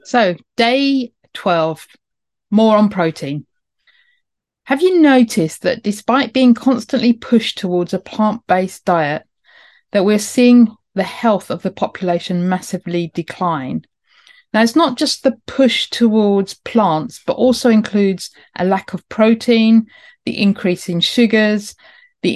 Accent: British